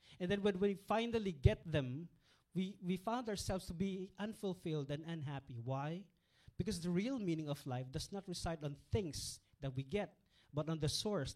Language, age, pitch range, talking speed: English, 40-59, 135-185 Hz, 185 wpm